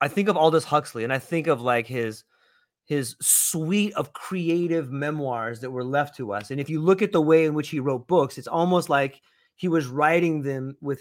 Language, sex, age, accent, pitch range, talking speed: English, male, 30-49, American, 140-170 Hz, 225 wpm